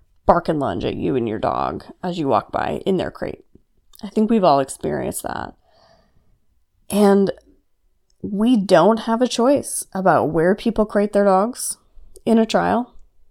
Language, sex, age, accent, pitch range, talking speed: English, female, 30-49, American, 170-225 Hz, 160 wpm